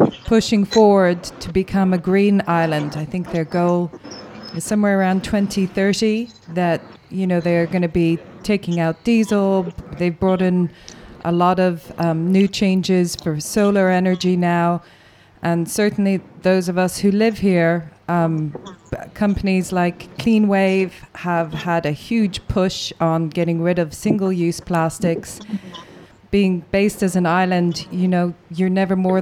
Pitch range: 165-190 Hz